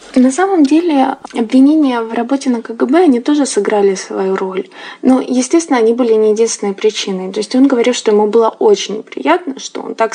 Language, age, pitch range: Russian, 20-39, 210-280 Hz